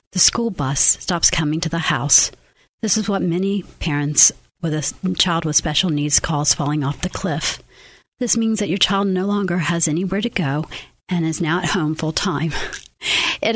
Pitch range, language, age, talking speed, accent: 160-195 Hz, English, 50-69, 190 wpm, American